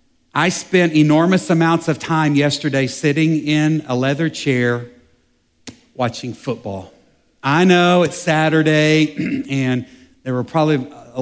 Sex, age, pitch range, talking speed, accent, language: male, 50-69, 135-160 Hz, 125 wpm, American, English